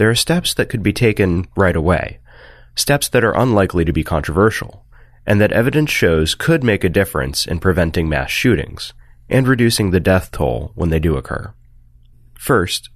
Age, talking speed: 30-49, 175 wpm